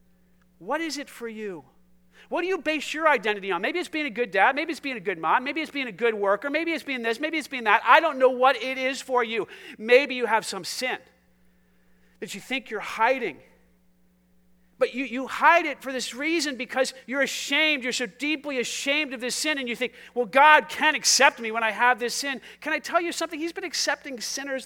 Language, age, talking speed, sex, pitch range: English, 40-59, 235 wpm, male, 190-290 Hz